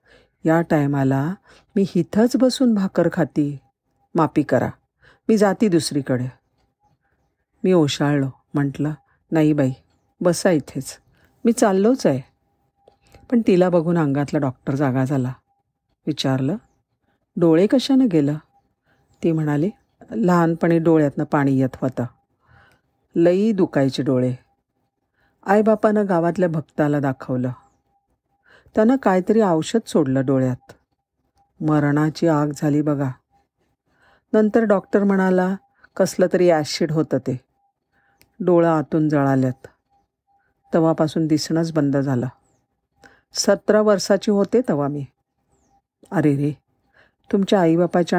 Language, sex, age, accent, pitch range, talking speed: Marathi, female, 50-69, native, 135-190 Hz, 100 wpm